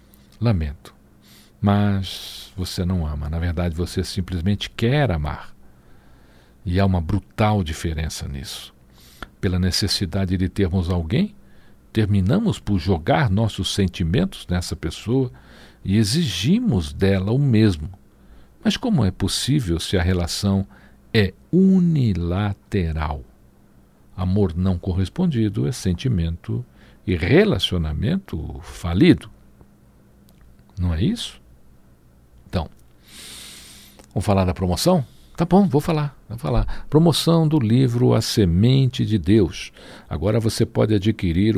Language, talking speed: Portuguese, 110 wpm